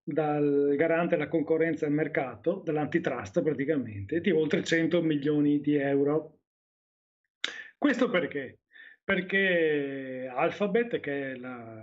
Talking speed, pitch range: 110 wpm, 140-180 Hz